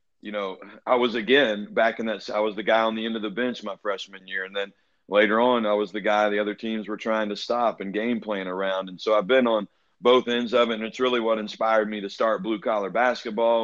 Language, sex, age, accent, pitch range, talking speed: English, male, 40-59, American, 100-110 Hz, 265 wpm